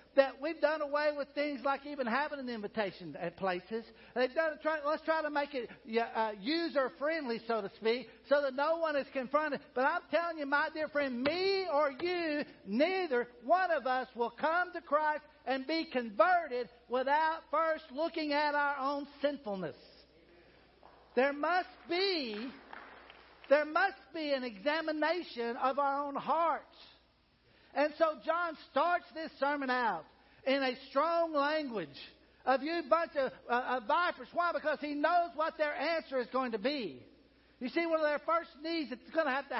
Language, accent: English, American